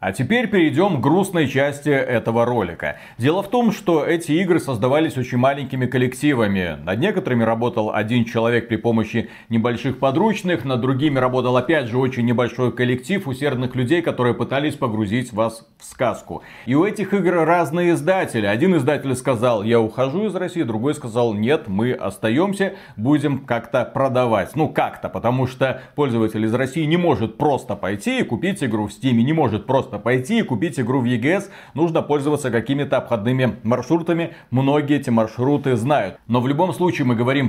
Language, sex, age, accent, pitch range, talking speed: Russian, male, 40-59, native, 125-160 Hz, 165 wpm